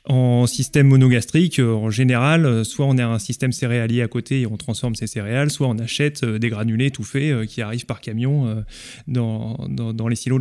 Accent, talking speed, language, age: French, 195 wpm, French, 20-39